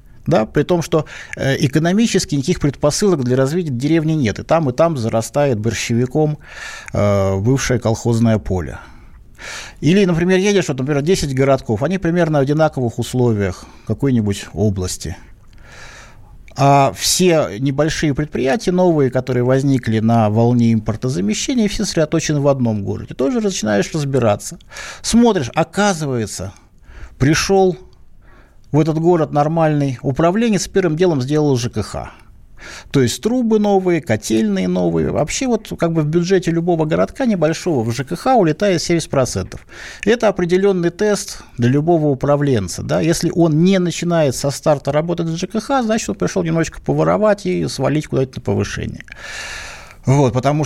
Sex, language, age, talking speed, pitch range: male, Russian, 50-69, 135 wpm, 120-175 Hz